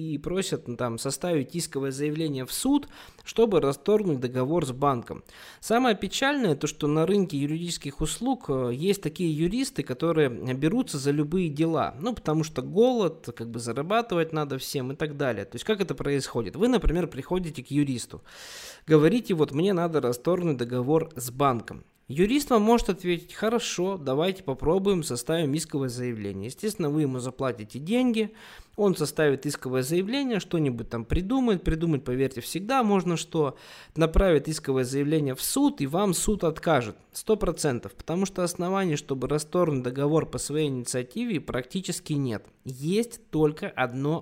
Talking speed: 150 wpm